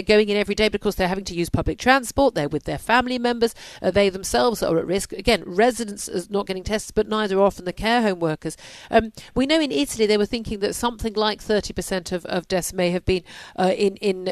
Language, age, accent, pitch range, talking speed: English, 40-59, British, 185-225 Hz, 245 wpm